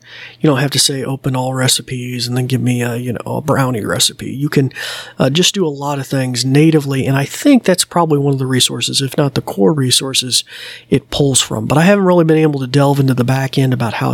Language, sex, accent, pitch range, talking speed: English, male, American, 125-160 Hz, 250 wpm